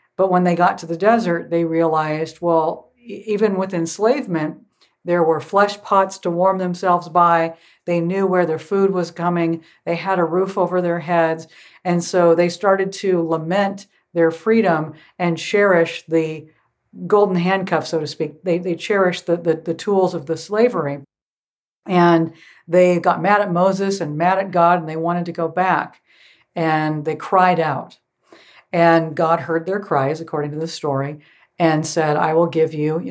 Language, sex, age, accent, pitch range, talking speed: English, female, 60-79, American, 160-190 Hz, 175 wpm